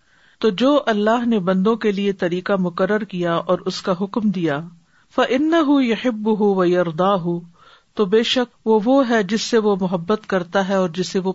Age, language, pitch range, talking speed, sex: 50-69, Urdu, 180-230 Hz, 180 wpm, female